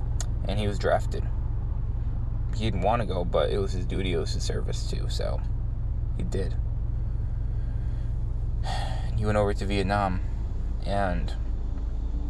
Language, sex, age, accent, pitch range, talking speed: English, male, 20-39, American, 90-105 Hz, 135 wpm